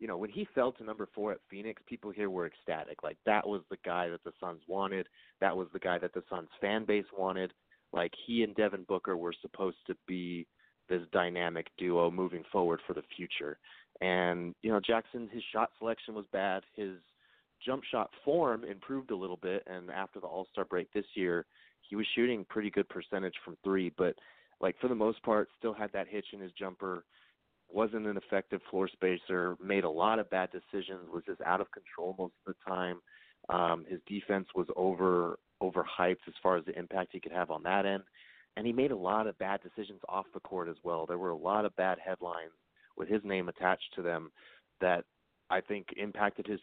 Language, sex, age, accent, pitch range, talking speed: English, male, 30-49, American, 90-105 Hz, 210 wpm